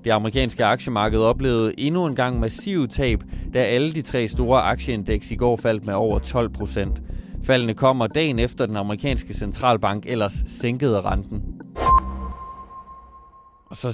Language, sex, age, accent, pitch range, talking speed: Danish, male, 20-39, native, 110-130 Hz, 140 wpm